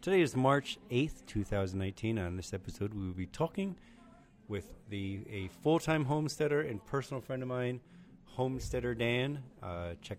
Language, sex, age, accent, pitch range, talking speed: English, male, 30-49, American, 100-140 Hz, 155 wpm